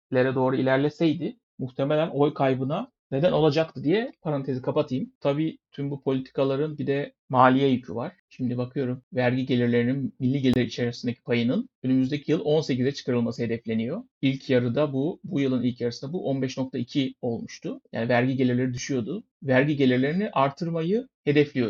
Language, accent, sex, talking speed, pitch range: Turkish, native, male, 140 wpm, 130-160 Hz